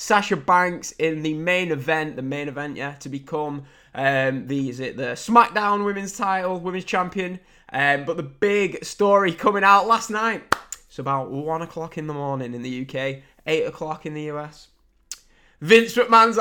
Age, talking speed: 20-39, 175 wpm